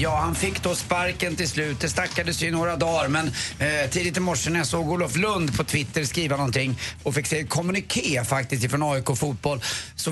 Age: 30-49